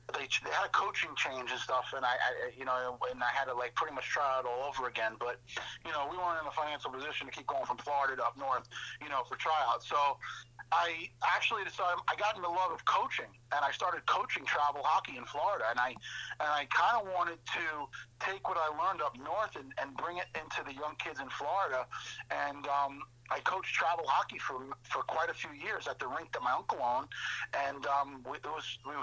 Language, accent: English, American